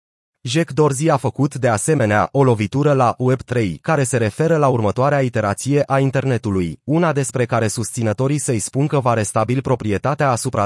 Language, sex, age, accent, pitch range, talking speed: Romanian, male, 30-49, native, 115-145 Hz, 165 wpm